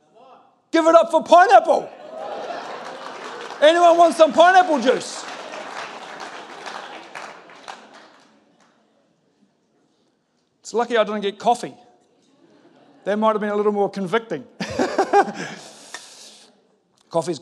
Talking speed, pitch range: 85 wpm, 175-260 Hz